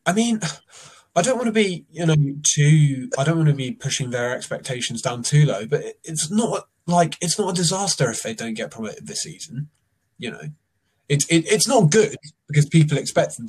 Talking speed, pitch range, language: 205 wpm, 110-155 Hz, English